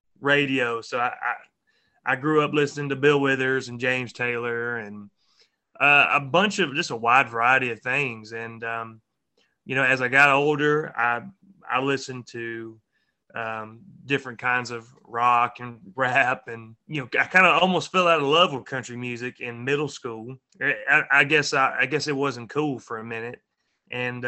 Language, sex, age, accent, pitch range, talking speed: English, male, 30-49, American, 120-150 Hz, 185 wpm